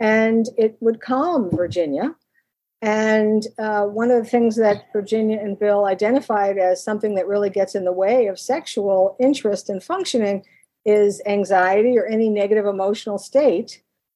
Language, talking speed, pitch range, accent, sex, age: English, 155 wpm, 195-235 Hz, American, female, 50-69